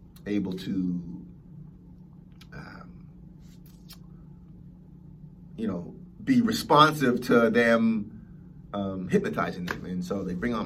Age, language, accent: 30-49, English, American